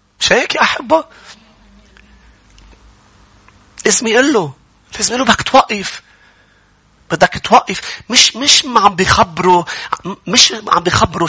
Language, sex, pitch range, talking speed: English, male, 140-215 Hz, 95 wpm